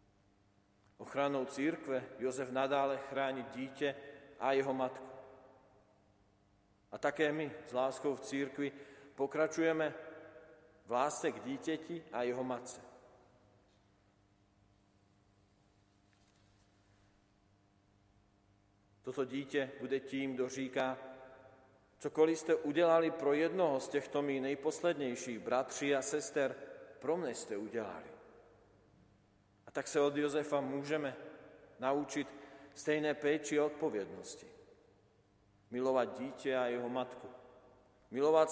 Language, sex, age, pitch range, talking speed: Slovak, male, 40-59, 110-145 Hz, 95 wpm